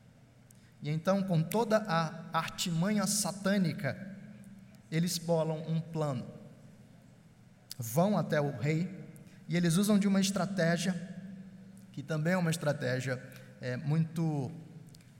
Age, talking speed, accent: 20-39, 105 wpm, Brazilian